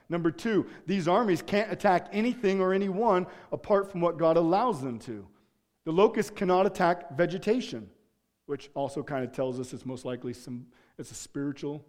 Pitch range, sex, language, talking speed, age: 145-210 Hz, male, English, 170 wpm, 40-59